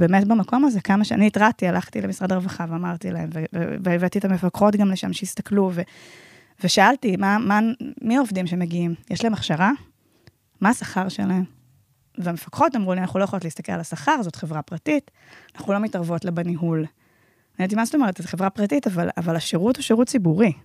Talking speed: 165 wpm